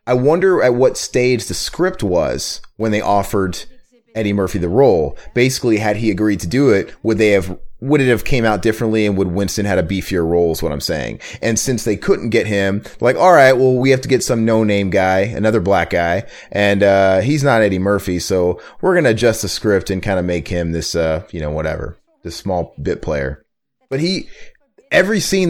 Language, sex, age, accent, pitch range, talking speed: English, male, 30-49, American, 95-120 Hz, 215 wpm